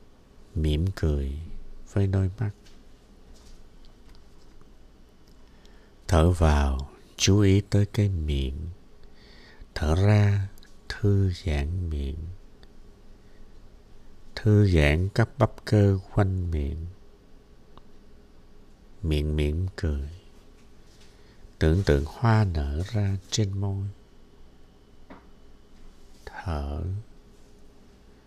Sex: male